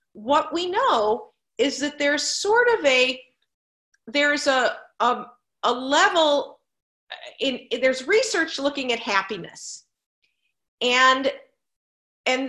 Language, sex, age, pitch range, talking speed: English, female, 40-59, 220-285 Hz, 105 wpm